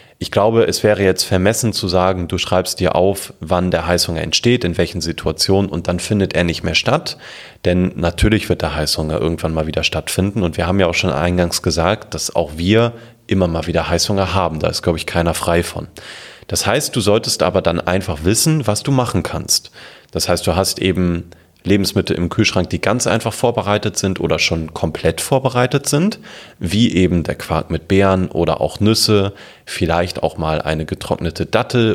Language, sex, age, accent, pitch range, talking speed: German, male, 30-49, German, 85-110 Hz, 195 wpm